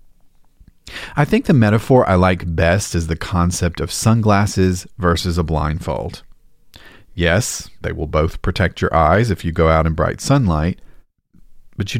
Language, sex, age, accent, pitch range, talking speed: English, male, 40-59, American, 80-105 Hz, 155 wpm